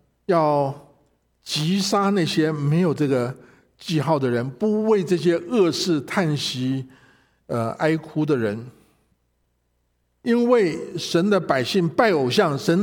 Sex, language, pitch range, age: male, Chinese, 145-190 Hz, 50-69